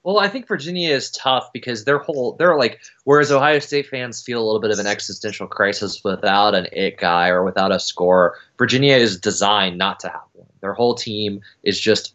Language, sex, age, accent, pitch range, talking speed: English, male, 20-39, American, 95-115 Hz, 210 wpm